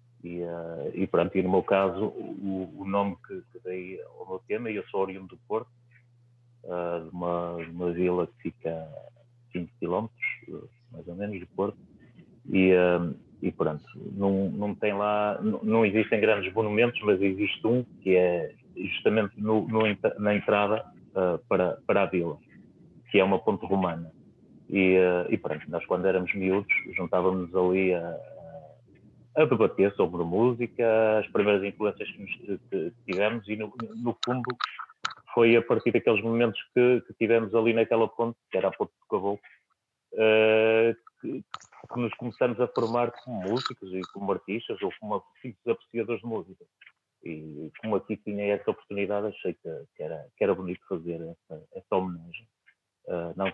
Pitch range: 90-115 Hz